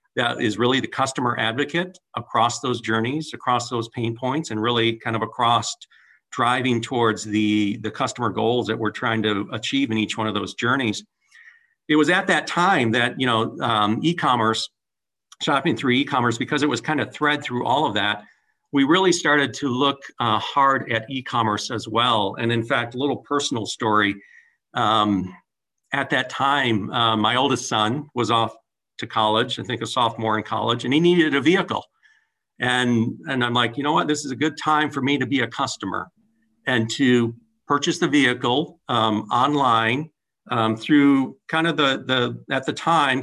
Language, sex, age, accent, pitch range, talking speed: English, male, 50-69, American, 115-150 Hz, 185 wpm